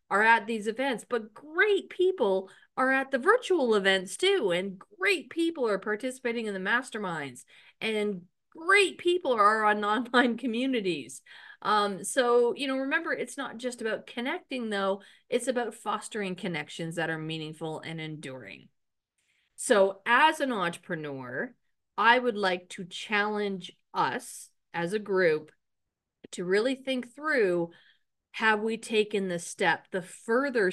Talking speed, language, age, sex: 140 wpm, English, 40-59, female